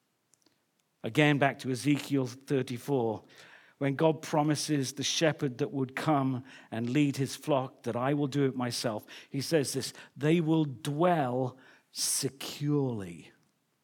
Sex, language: male, English